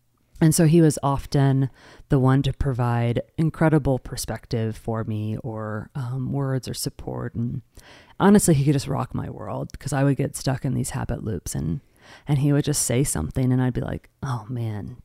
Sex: female